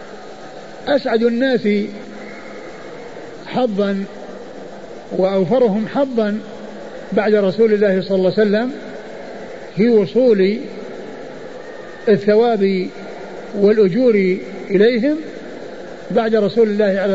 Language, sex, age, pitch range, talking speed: Arabic, male, 50-69, 190-235 Hz, 75 wpm